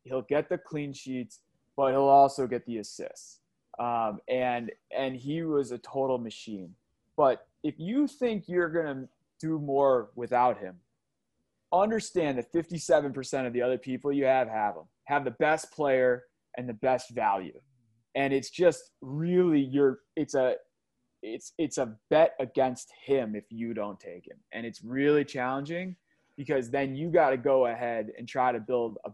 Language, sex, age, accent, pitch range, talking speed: English, male, 20-39, American, 120-155 Hz, 170 wpm